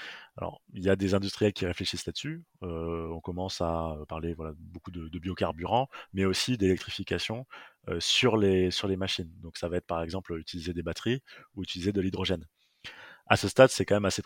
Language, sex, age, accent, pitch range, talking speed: French, male, 20-39, French, 85-100 Hz, 185 wpm